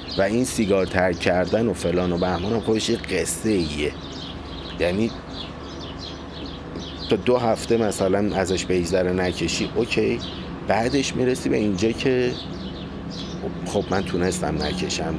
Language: Persian